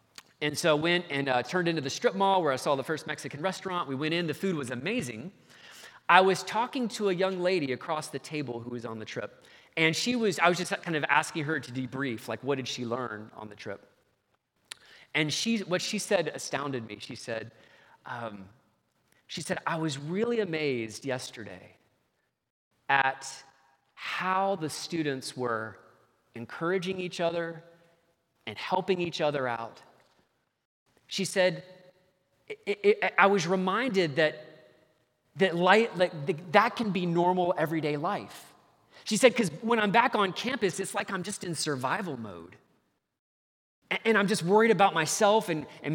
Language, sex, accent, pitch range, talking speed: English, male, American, 140-190 Hz, 165 wpm